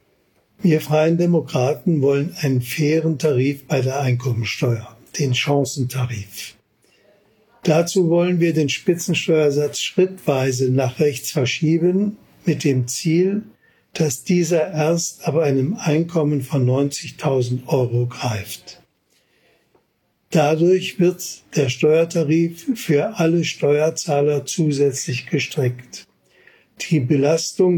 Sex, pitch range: male, 140-170 Hz